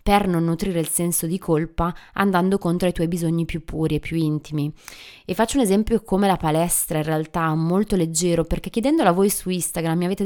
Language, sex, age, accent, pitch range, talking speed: Italian, female, 20-39, native, 160-185 Hz, 215 wpm